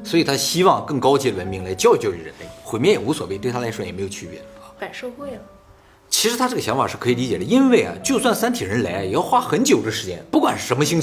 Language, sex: Chinese, male